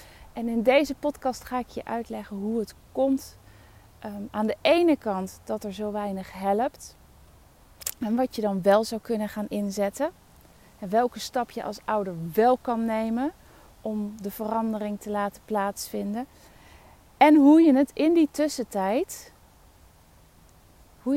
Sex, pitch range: female, 190-245 Hz